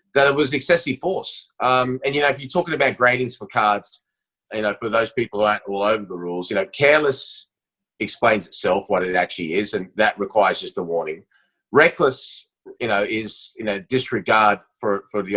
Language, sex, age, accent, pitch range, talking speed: English, male, 30-49, Australian, 105-135 Hz, 205 wpm